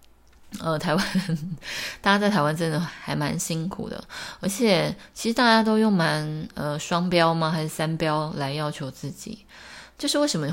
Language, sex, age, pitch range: Chinese, female, 20-39, 150-195 Hz